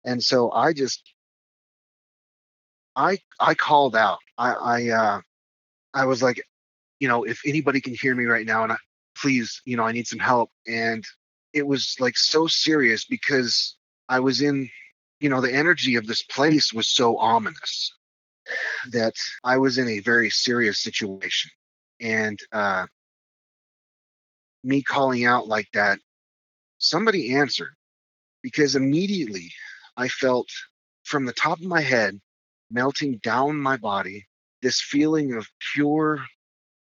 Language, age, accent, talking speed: English, 30-49, American, 140 wpm